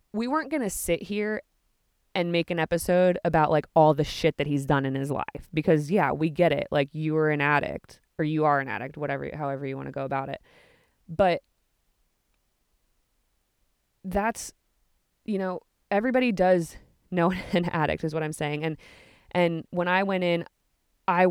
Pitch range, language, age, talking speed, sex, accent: 150-185 Hz, English, 20-39, 180 wpm, female, American